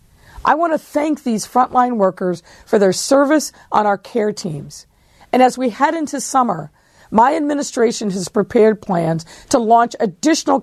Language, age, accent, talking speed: English, 50-69, American, 160 wpm